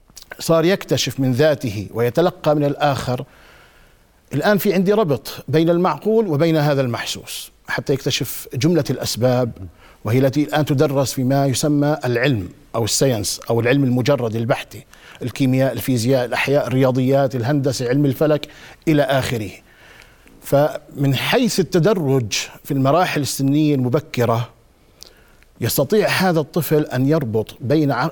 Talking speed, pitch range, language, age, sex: 115 wpm, 125-160 Hz, Arabic, 50-69, male